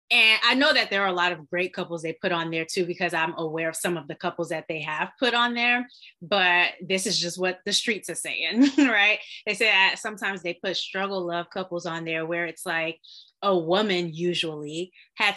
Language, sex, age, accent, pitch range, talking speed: English, female, 20-39, American, 175-225 Hz, 225 wpm